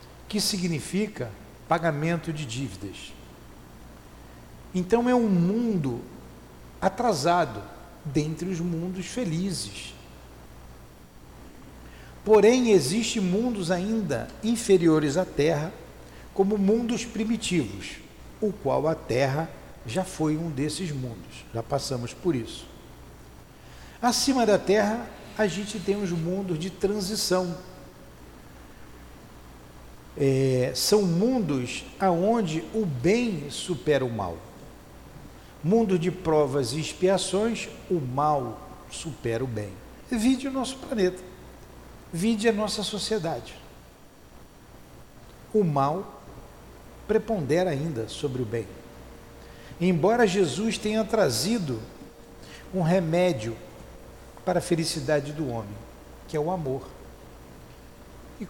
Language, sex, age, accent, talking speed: Portuguese, male, 60-79, Brazilian, 100 wpm